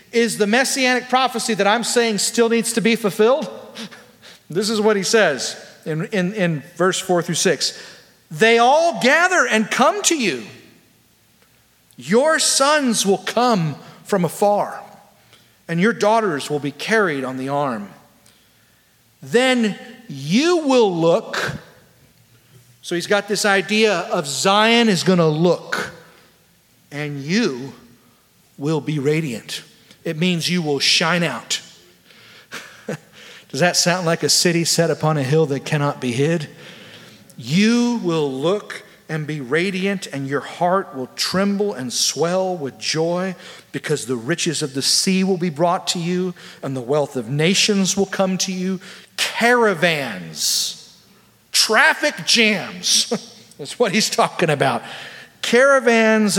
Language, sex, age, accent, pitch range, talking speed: English, male, 40-59, American, 155-220 Hz, 140 wpm